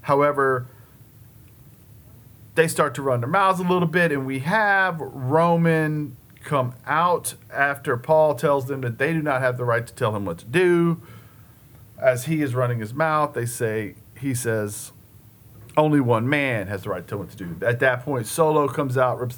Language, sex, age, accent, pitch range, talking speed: English, male, 40-59, American, 120-150 Hz, 190 wpm